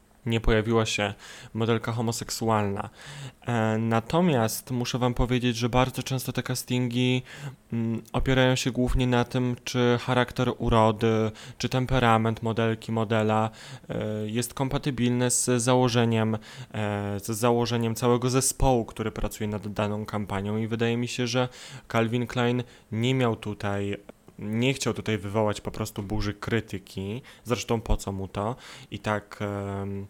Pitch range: 110-125 Hz